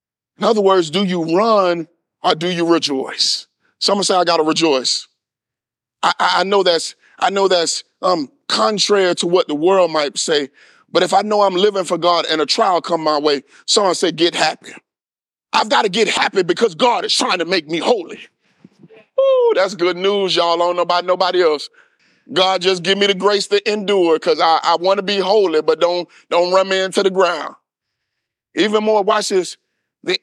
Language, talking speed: English, 205 wpm